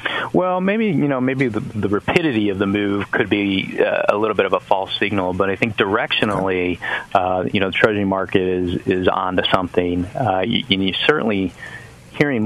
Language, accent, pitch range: English, American, 95-110 Hz